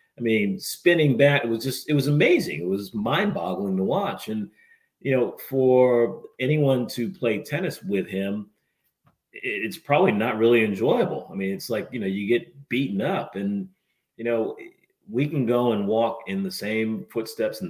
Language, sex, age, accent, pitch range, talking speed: English, male, 40-59, American, 95-150 Hz, 175 wpm